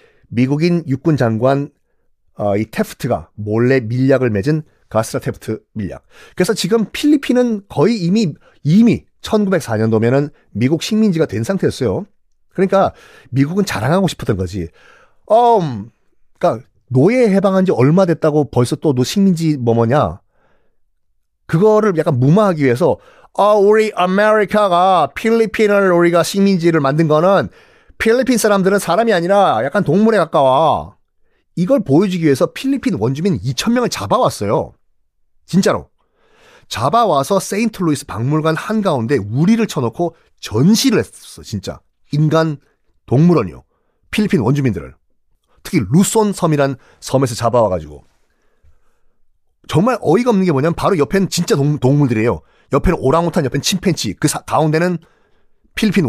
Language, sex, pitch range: Korean, male, 130-205 Hz